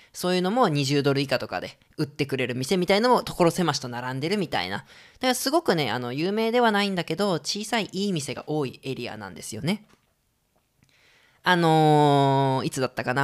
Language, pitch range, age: Japanese, 125-175 Hz, 20-39